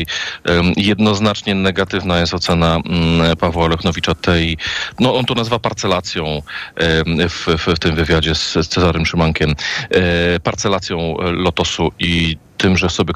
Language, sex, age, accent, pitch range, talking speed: Polish, male, 40-59, native, 85-125 Hz, 120 wpm